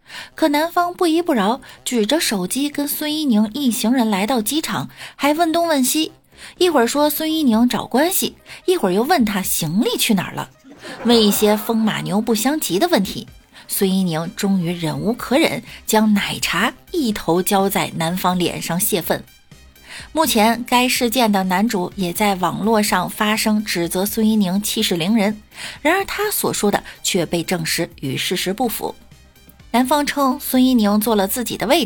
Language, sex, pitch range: Chinese, female, 195-270 Hz